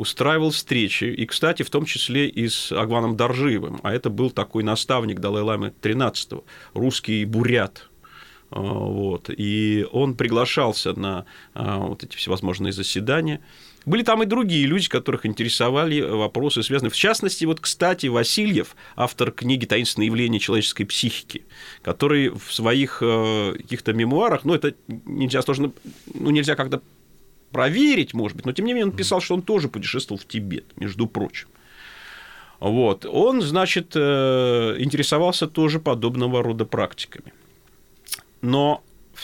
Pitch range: 105-145 Hz